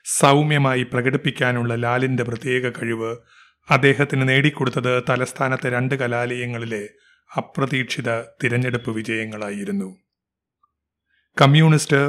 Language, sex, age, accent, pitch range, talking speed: Malayalam, male, 30-49, native, 120-140 Hz, 70 wpm